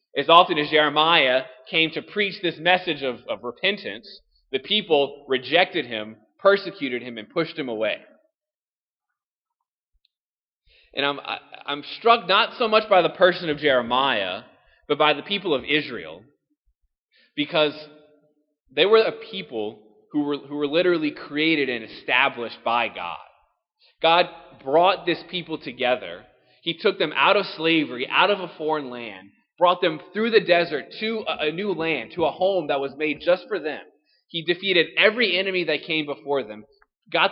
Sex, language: male, English